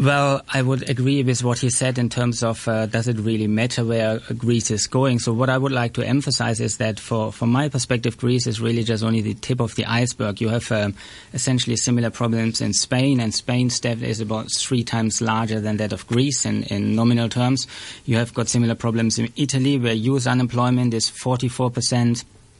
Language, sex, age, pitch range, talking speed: English, male, 30-49, 115-125 Hz, 220 wpm